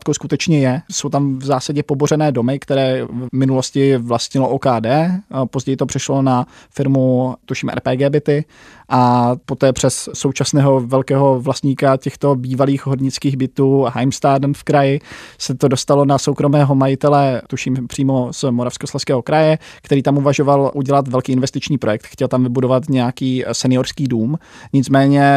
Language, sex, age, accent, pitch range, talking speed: Czech, male, 20-39, native, 130-145 Hz, 140 wpm